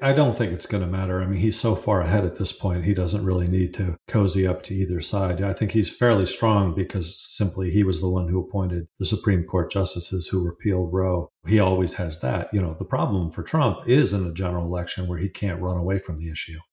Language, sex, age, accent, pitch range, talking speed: English, male, 40-59, American, 90-105 Hz, 245 wpm